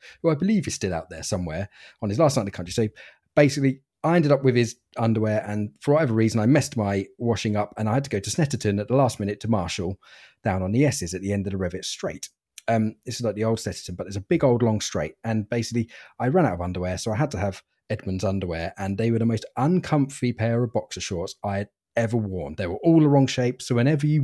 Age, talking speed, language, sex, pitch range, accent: 30-49, 265 wpm, English, male, 95-125 Hz, British